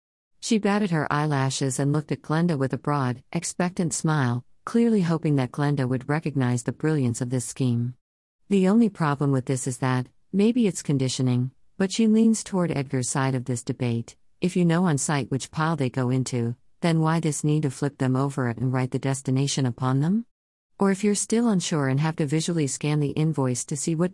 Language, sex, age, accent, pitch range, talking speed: English, female, 50-69, American, 130-165 Hz, 205 wpm